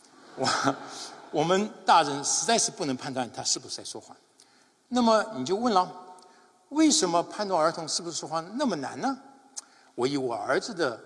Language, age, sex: Chinese, 60-79, male